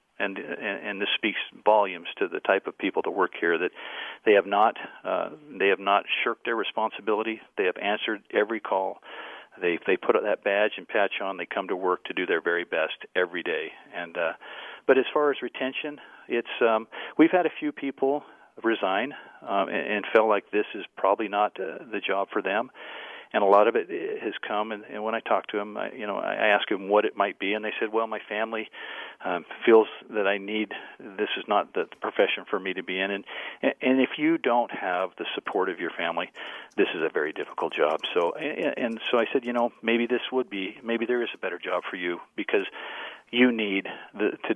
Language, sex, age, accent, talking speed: English, male, 50-69, American, 220 wpm